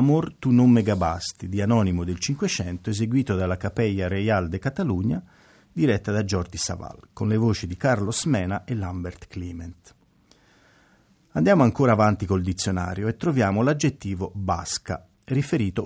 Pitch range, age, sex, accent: 95-125 Hz, 40-59, male, native